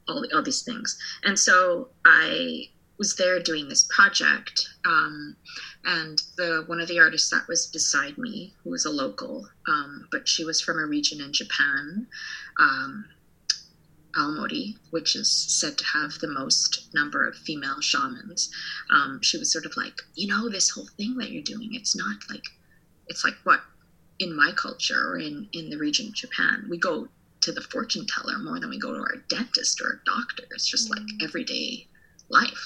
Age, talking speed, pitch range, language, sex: 20-39, 180 wpm, 170-270 Hz, English, female